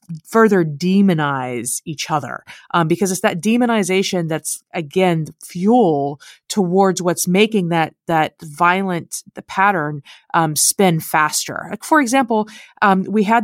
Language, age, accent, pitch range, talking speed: English, 30-49, American, 175-240 Hz, 130 wpm